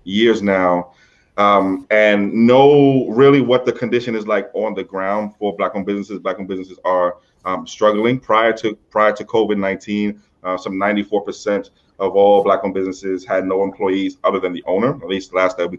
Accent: American